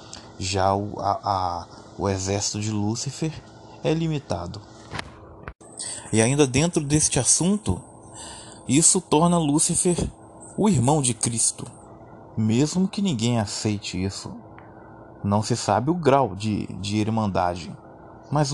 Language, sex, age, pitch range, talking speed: Portuguese, male, 20-39, 105-130 Hz, 110 wpm